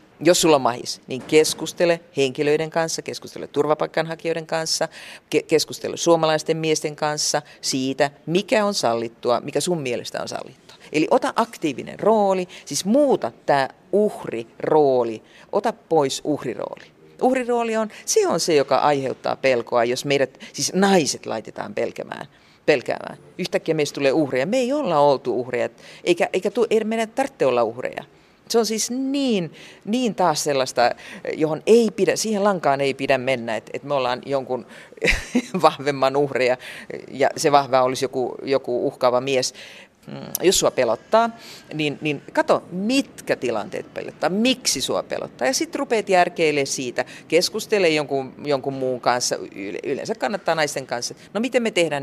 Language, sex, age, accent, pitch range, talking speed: Finnish, female, 40-59, native, 135-185 Hz, 140 wpm